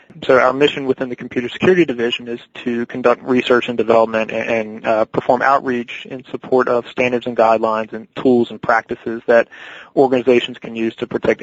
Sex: male